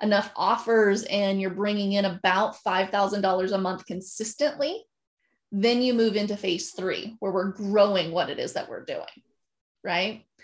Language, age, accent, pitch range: English, 20-39, American, 195-235 Hz